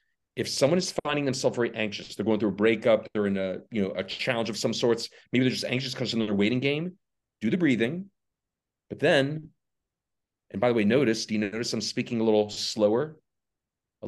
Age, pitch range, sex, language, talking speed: 40-59, 110-155 Hz, male, English, 215 wpm